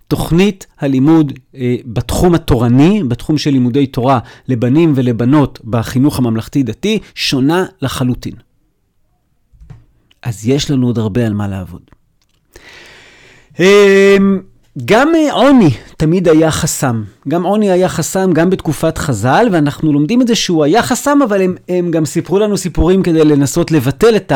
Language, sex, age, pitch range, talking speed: Hebrew, male, 40-59, 130-165 Hz, 130 wpm